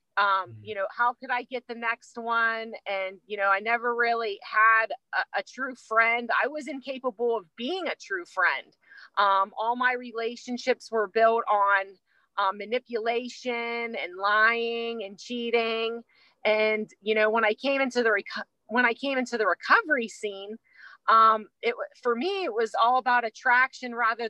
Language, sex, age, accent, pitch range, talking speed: English, female, 30-49, American, 210-250 Hz, 165 wpm